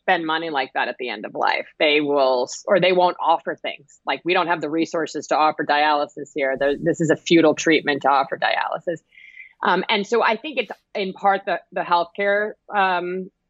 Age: 30-49